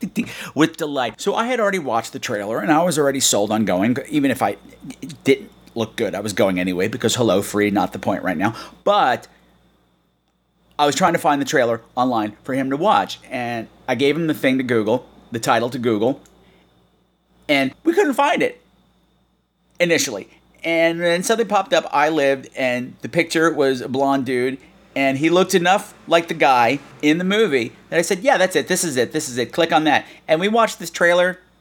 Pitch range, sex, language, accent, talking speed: 135-185 Hz, male, English, American, 210 wpm